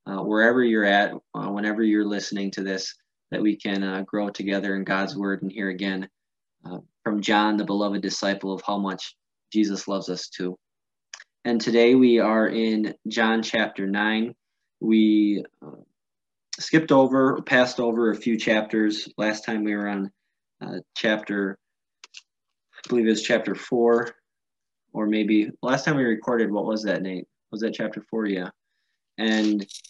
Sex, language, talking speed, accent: male, English, 165 wpm, American